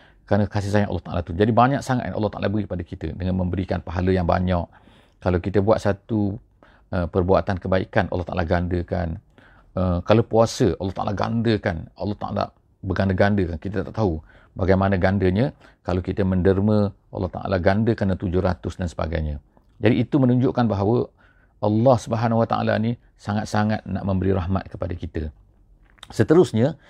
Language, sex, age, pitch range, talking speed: English, male, 40-59, 90-110 Hz, 155 wpm